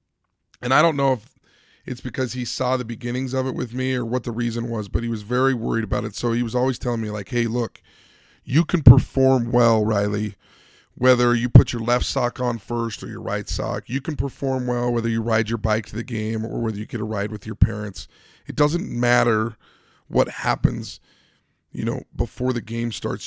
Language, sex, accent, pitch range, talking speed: English, male, American, 110-130 Hz, 220 wpm